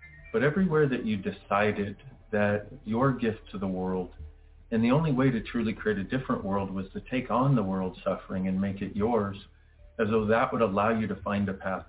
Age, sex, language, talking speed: 40-59, male, English, 210 wpm